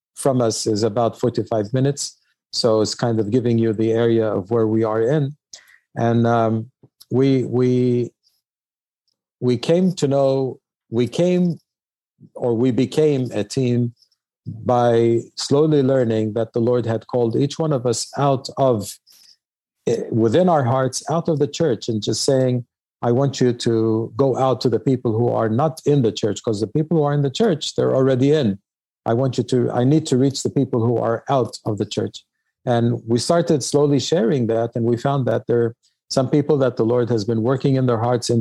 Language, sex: English, male